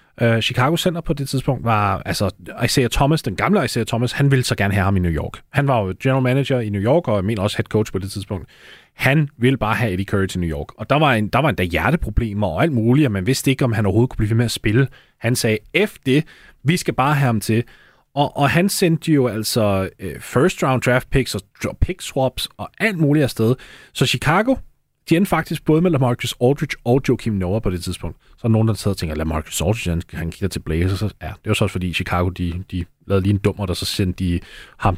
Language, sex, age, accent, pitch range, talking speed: Danish, male, 30-49, native, 100-140 Hz, 240 wpm